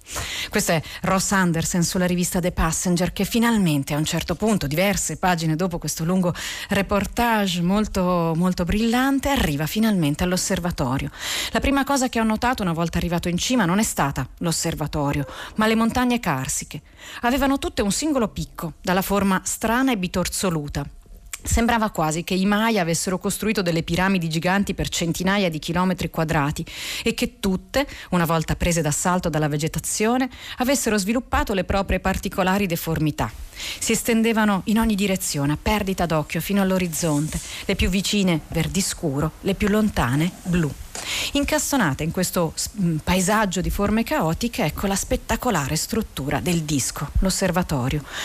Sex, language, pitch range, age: female, Italian, 165-220 Hz, 40-59